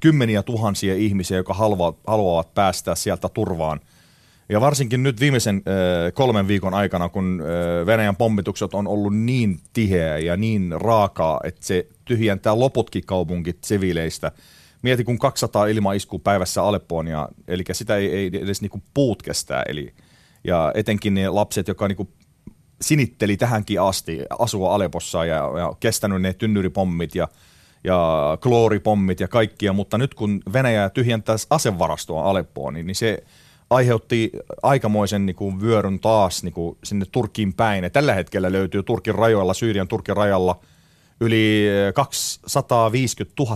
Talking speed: 140 wpm